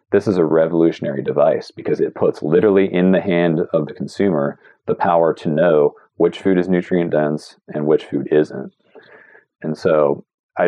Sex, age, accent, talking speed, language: male, 40-59, American, 175 wpm, English